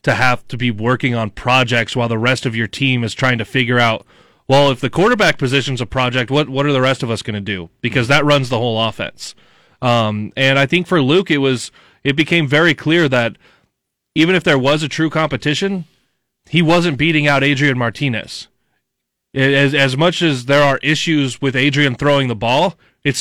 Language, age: English, 30-49